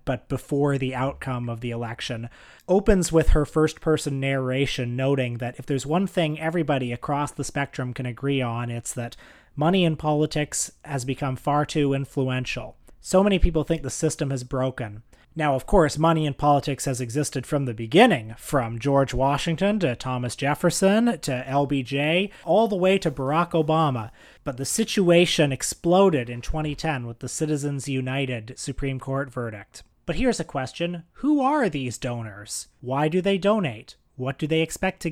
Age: 30-49